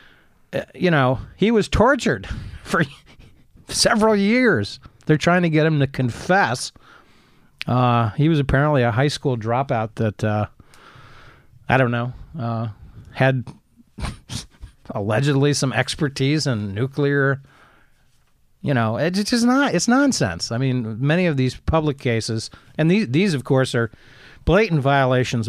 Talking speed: 135 wpm